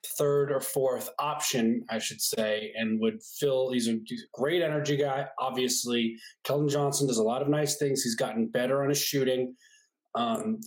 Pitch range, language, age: 125-170 Hz, English, 20-39